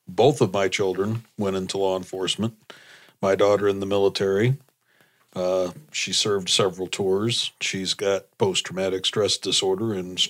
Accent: American